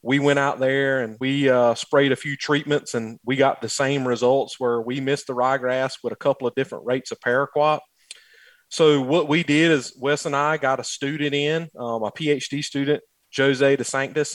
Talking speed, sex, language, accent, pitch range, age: 205 wpm, male, English, American, 125-145 Hz, 30-49